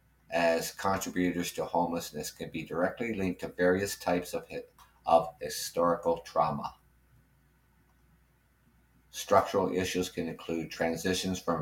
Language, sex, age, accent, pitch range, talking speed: English, male, 60-79, American, 80-95 Hz, 110 wpm